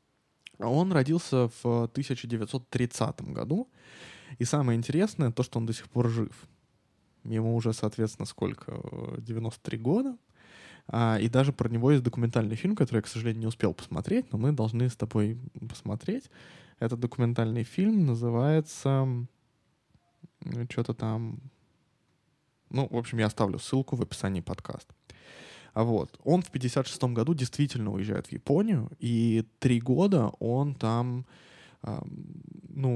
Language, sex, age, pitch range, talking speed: Russian, male, 20-39, 115-150 Hz, 130 wpm